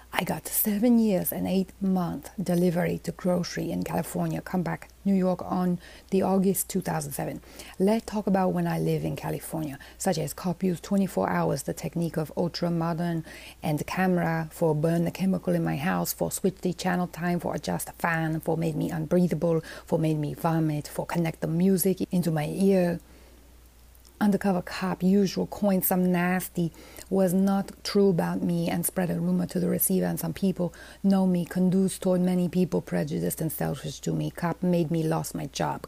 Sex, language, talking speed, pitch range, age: female, English, 180 wpm, 160-185 Hz, 30-49